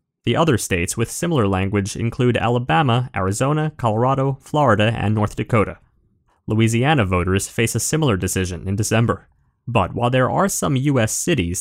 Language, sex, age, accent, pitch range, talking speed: English, male, 20-39, American, 100-140 Hz, 150 wpm